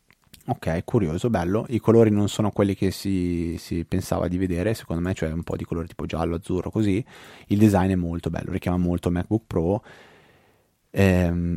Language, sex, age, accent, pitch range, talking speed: Italian, male, 30-49, native, 85-105 Hz, 180 wpm